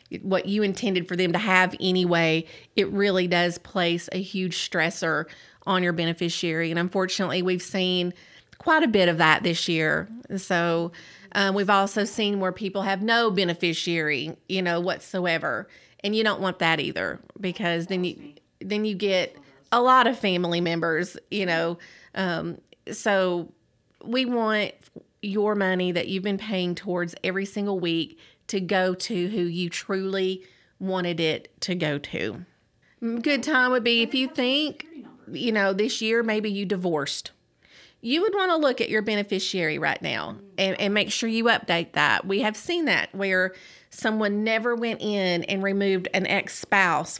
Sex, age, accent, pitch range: female, 30-49, American, 175-210 Hz